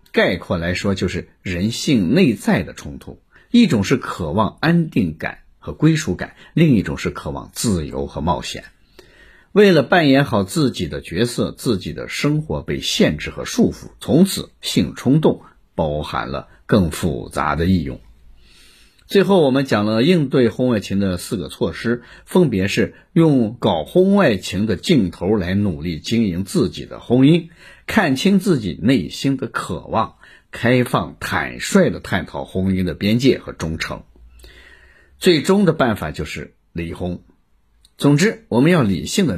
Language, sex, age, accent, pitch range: Chinese, male, 50-69, native, 85-135 Hz